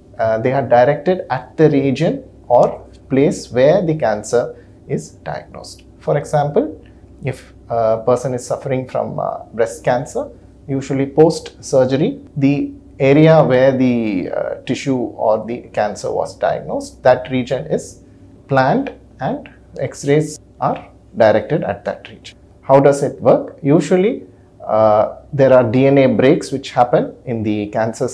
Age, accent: 30-49, Indian